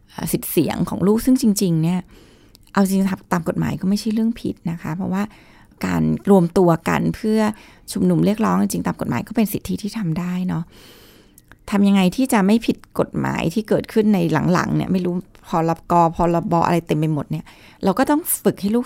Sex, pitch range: female, 165-215 Hz